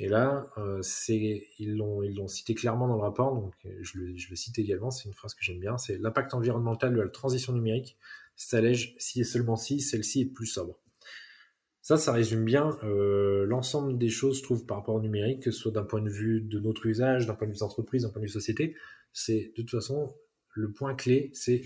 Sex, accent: male, French